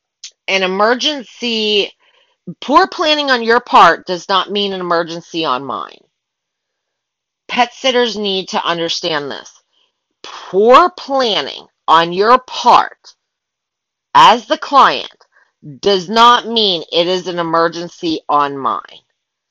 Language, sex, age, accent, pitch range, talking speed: English, female, 40-59, American, 185-255 Hz, 115 wpm